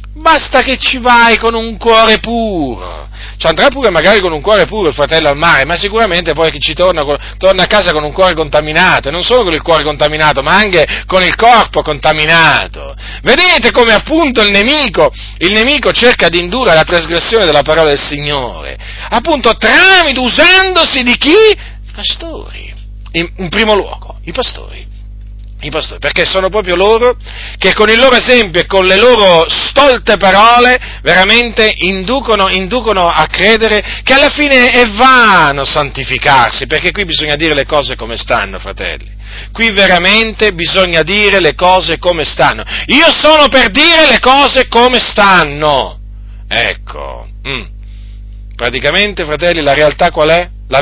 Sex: male